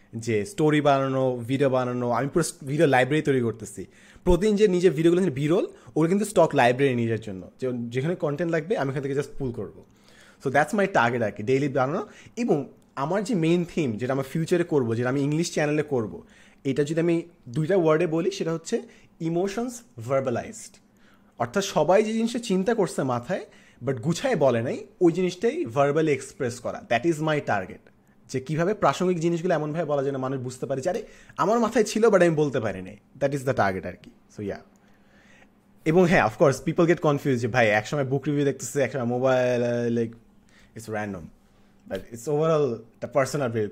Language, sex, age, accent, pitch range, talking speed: Bengali, male, 30-49, native, 125-170 Hz, 140 wpm